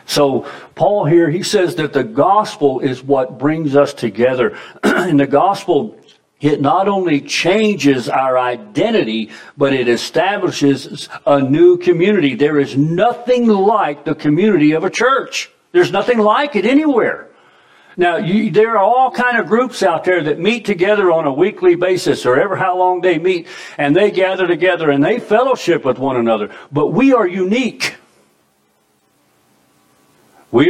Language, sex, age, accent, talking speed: English, male, 60-79, American, 155 wpm